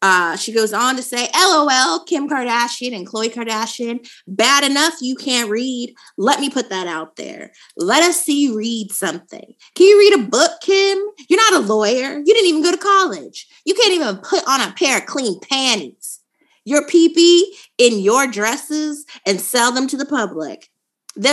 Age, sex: 20-39, female